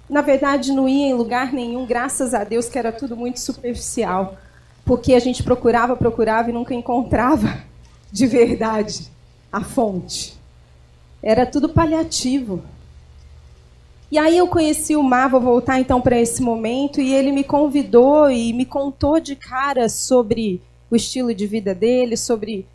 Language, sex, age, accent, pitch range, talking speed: Portuguese, female, 30-49, Brazilian, 210-270 Hz, 155 wpm